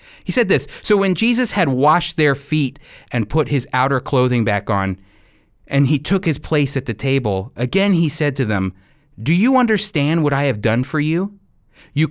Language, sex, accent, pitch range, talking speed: English, male, American, 115-165 Hz, 200 wpm